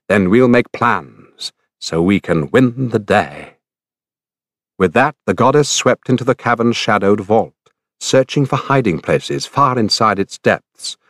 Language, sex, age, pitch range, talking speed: English, male, 60-79, 100-130 Hz, 150 wpm